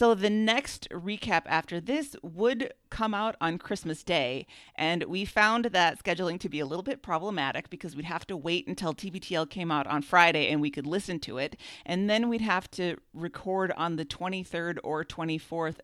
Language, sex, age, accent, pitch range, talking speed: English, female, 40-59, American, 155-190 Hz, 195 wpm